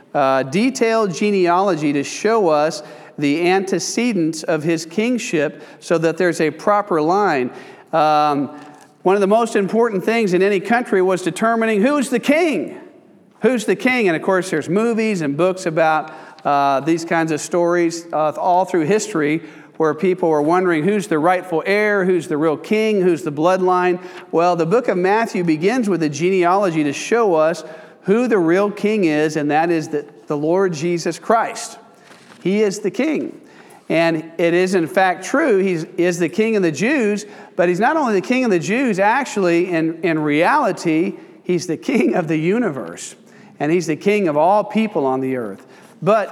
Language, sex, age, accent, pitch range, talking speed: English, male, 40-59, American, 160-210 Hz, 180 wpm